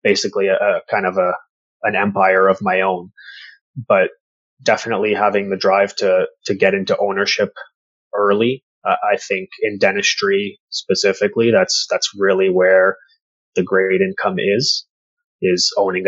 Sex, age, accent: male, 20-39, Canadian